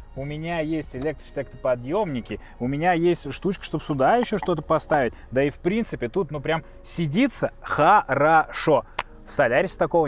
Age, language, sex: 20-39, Russian, male